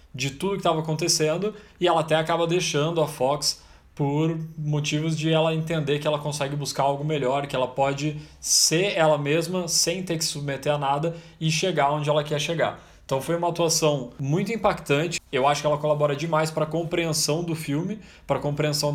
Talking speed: 195 wpm